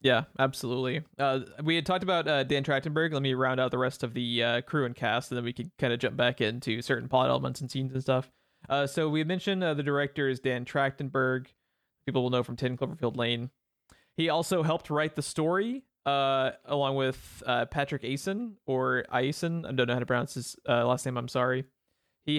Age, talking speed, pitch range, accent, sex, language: 30-49, 220 wpm, 125-150 Hz, American, male, English